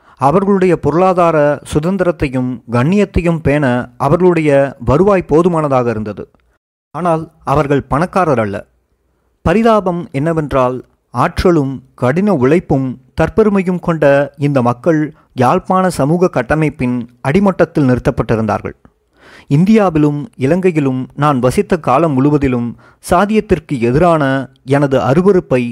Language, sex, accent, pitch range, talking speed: Tamil, male, native, 130-180 Hz, 85 wpm